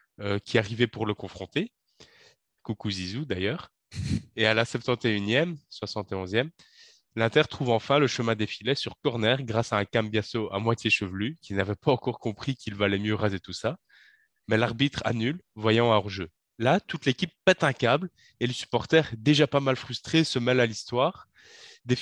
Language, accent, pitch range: French, French, 105-135 Hz